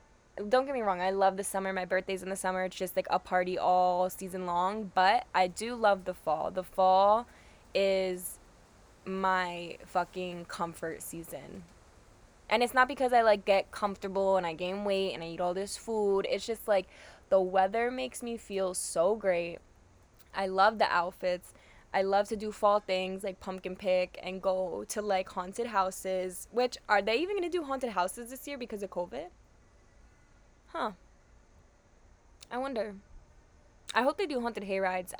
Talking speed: 175 wpm